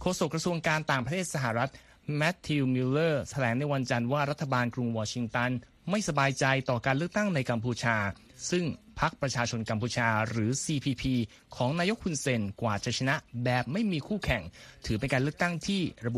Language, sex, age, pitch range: Thai, male, 20-39, 115-160 Hz